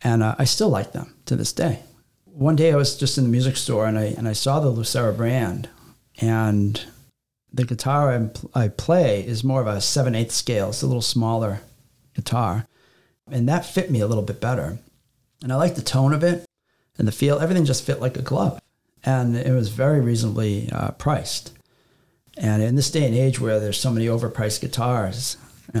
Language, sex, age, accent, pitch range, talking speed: English, male, 40-59, American, 110-135 Hz, 205 wpm